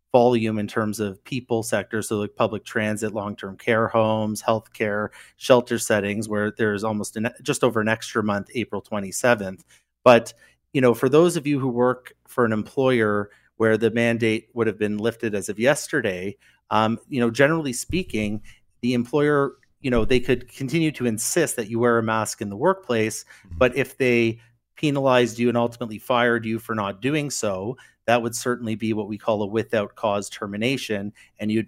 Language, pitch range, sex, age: English, 105-120 Hz, male, 30-49